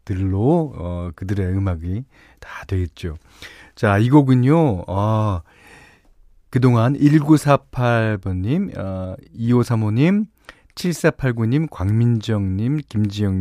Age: 40-59